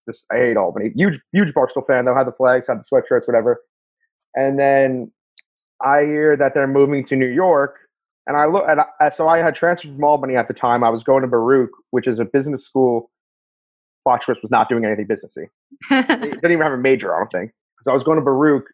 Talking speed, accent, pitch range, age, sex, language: 225 wpm, American, 130-165 Hz, 30-49, male, English